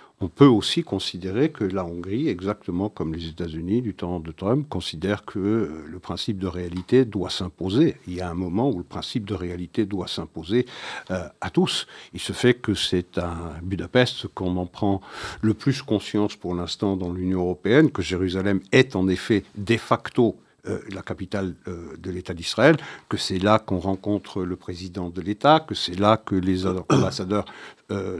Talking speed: 180 wpm